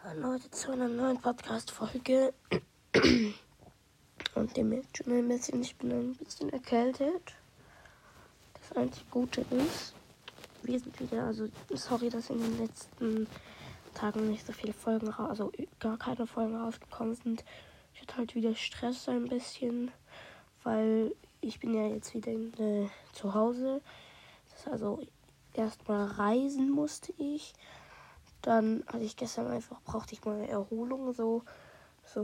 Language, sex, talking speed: German, female, 140 wpm